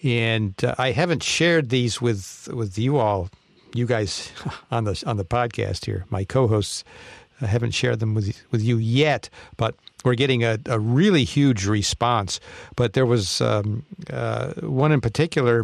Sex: male